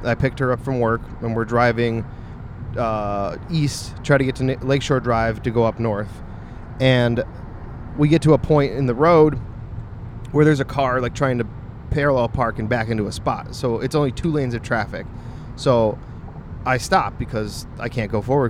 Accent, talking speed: American, 190 wpm